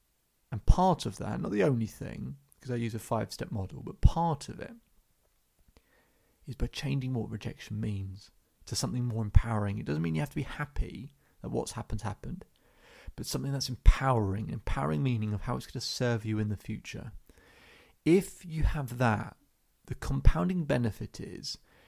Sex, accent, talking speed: male, British, 175 wpm